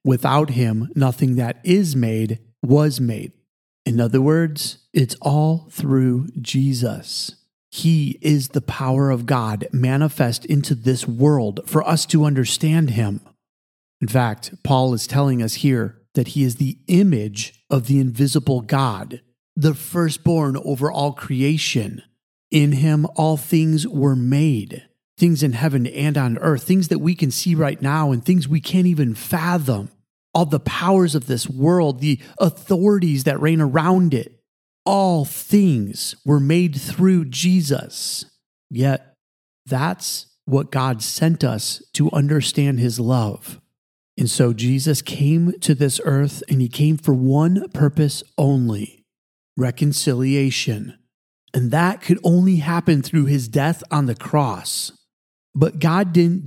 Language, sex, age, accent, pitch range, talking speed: English, male, 40-59, American, 125-160 Hz, 140 wpm